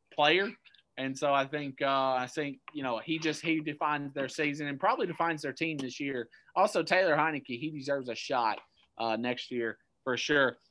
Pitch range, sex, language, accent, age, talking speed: 155-210 Hz, male, English, American, 30-49, 195 wpm